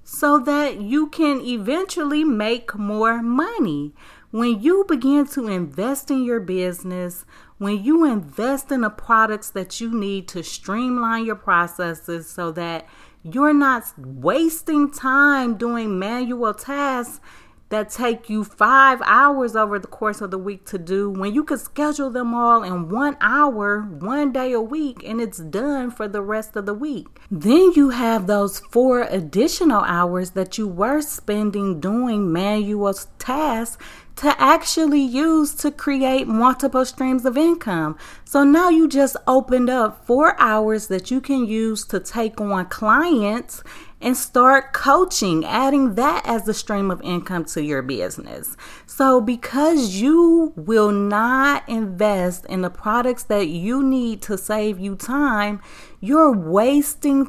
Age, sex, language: 30-49, female, English